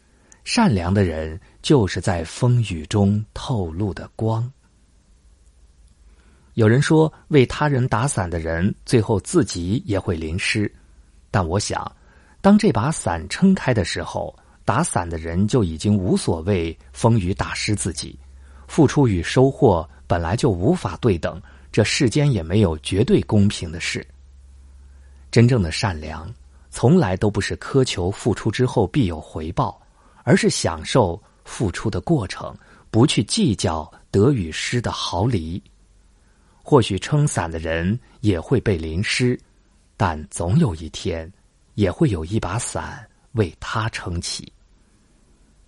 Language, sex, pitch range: Chinese, male, 80-120 Hz